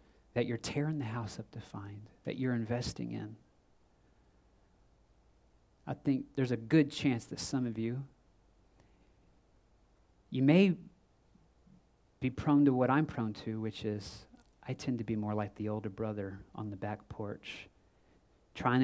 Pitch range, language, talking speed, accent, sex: 105-140 Hz, English, 150 wpm, American, male